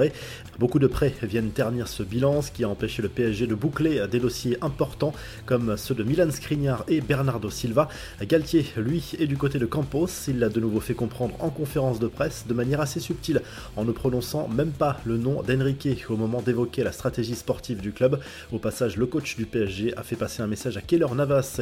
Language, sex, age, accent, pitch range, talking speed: French, male, 20-39, French, 110-135 Hz, 215 wpm